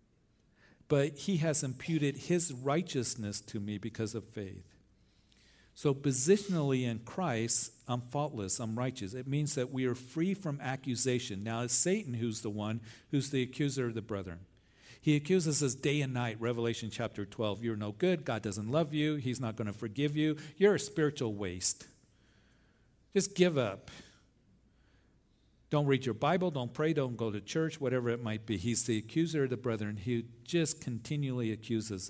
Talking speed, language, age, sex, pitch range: 170 wpm, English, 50-69, male, 110-140 Hz